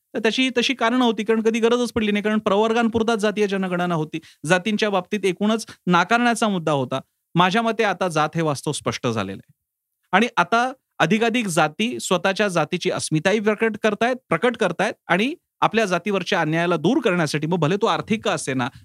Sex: male